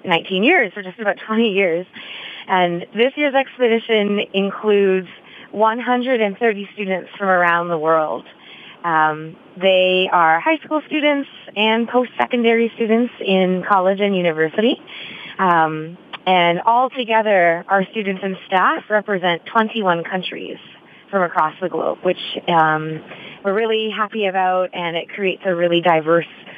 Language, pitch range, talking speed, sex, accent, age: English, 175-220 Hz, 130 wpm, female, American, 20-39